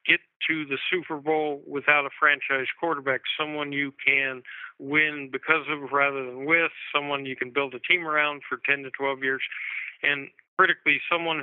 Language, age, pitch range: English, 50-69, 135-150 Hz